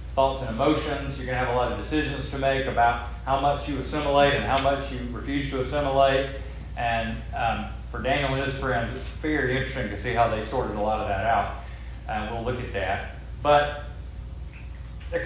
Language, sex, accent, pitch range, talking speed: English, male, American, 115-150 Hz, 210 wpm